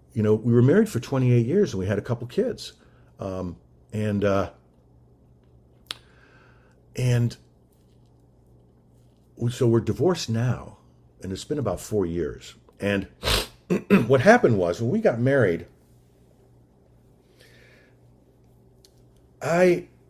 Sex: male